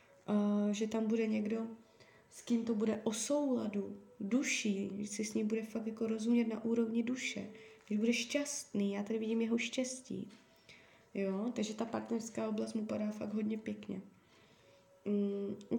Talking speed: 160 wpm